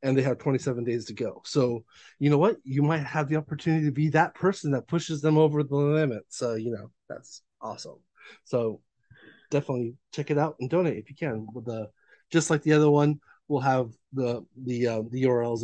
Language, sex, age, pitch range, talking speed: English, male, 30-49, 130-150 Hz, 210 wpm